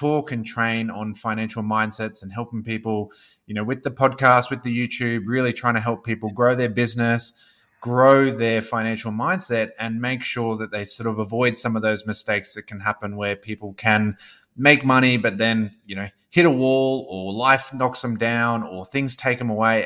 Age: 20-39